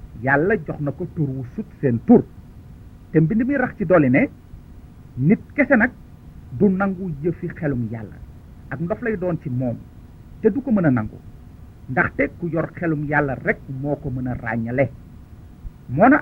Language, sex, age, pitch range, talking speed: Italian, male, 50-69, 120-185 Hz, 90 wpm